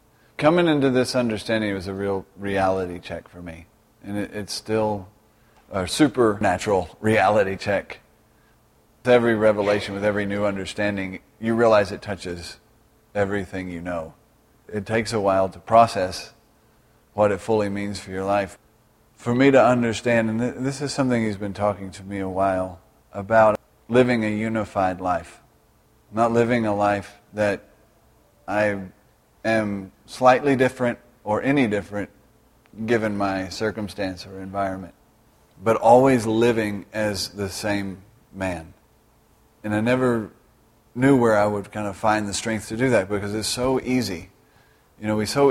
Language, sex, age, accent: English, male, 40-59, American